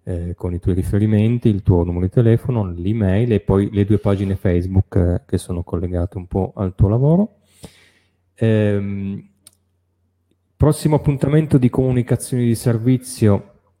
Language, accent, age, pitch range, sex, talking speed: Italian, native, 30-49, 95-115 Hz, male, 145 wpm